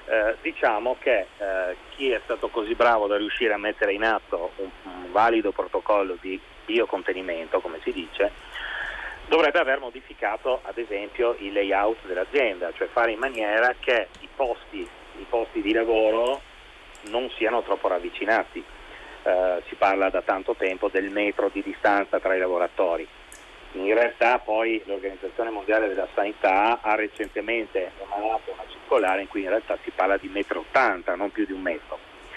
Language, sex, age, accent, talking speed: Italian, male, 40-59, native, 160 wpm